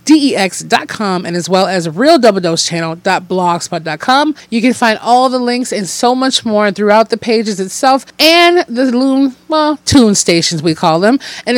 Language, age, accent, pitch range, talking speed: English, 30-49, American, 190-255 Hz, 170 wpm